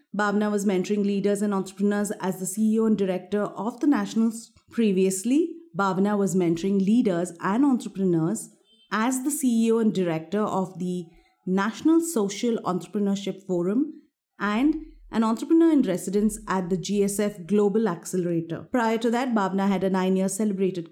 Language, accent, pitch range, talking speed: English, Indian, 185-235 Hz, 145 wpm